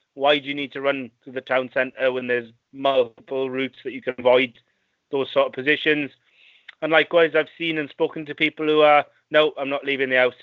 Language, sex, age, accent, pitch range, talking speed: English, male, 30-49, British, 130-155 Hz, 220 wpm